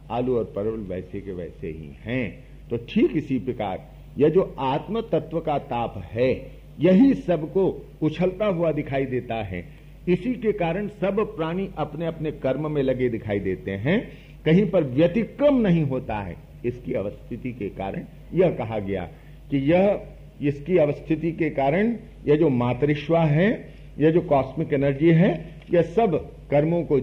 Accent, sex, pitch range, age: native, male, 125-170 Hz, 50-69